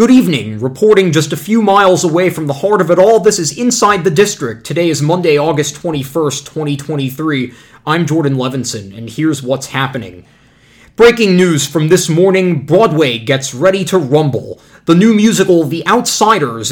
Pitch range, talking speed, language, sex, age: 135-175 Hz, 170 wpm, English, male, 20-39